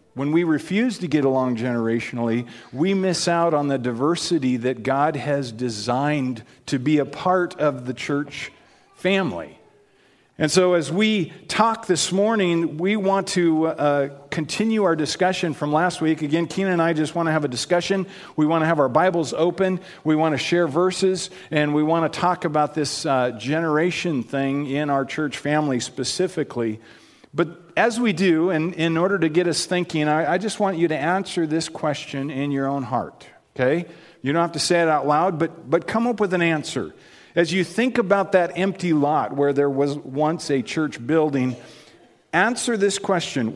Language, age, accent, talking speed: English, 50-69, American, 185 wpm